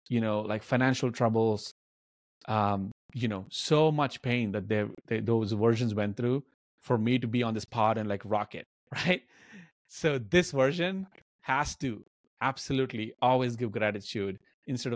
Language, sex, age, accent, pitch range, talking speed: English, male, 30-49, Indian, 105-130 Hz, 160 wpm